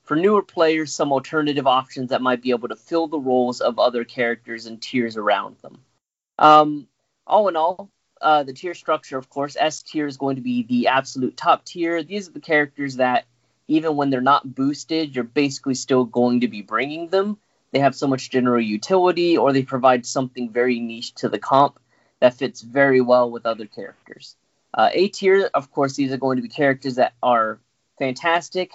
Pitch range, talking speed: 125-160 Hz, 200 wpm